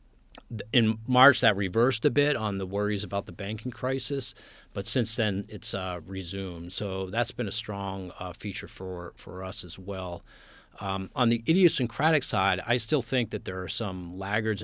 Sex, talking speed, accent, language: male, 180 wpm, American, English